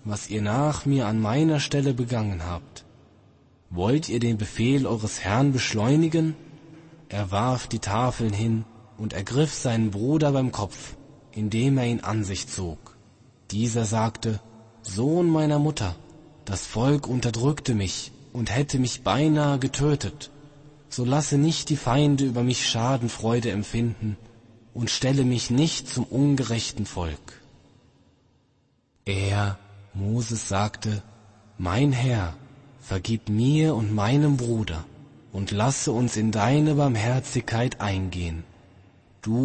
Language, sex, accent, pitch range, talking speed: German, male, German, 100-130 Hz, 125 wpm